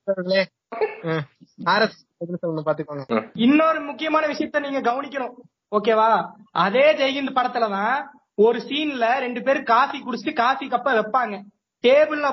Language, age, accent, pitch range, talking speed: Tamil, 30-49, native, 220-270 Hz, 90 wpm